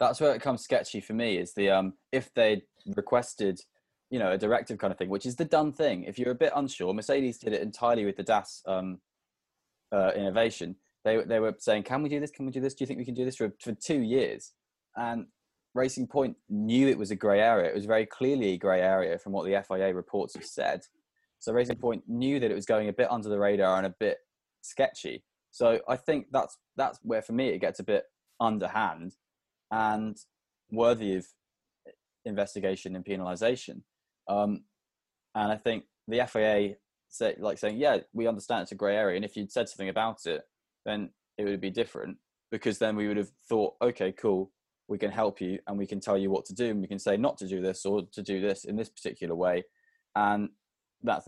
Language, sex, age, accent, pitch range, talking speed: English, male, 20-39, British, 100-125 Hz, 220 wpm